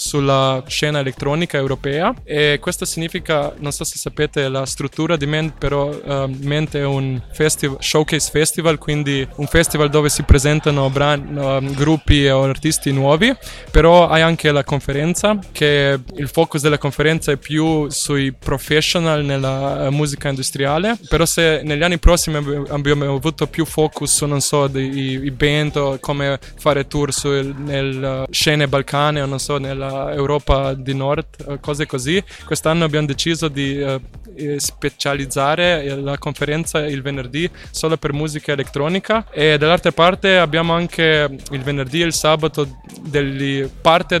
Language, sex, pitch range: Italian, male, 140-155 Hz